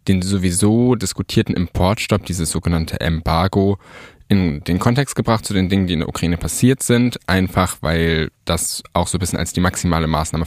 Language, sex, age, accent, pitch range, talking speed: German, male, 10-29, German, 85-105 Hz, 180 wpm